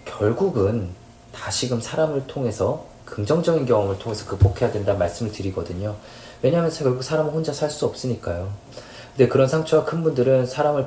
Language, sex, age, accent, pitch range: Korean, male, 20-39, native, 100-125 Hz